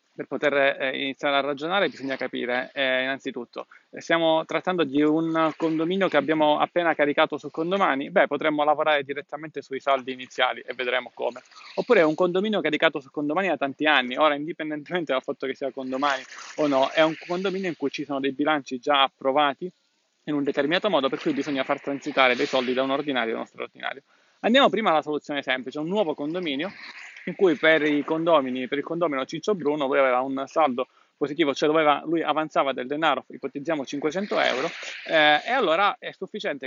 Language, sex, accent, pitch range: Italian, male, native, 140-165 Hz